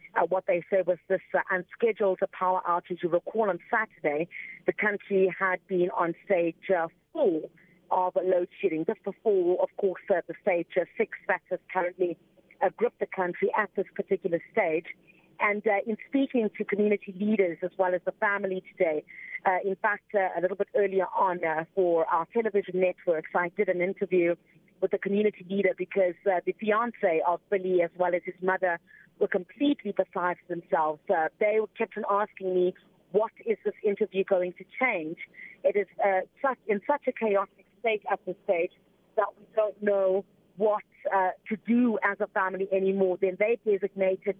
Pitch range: 185-215 Hz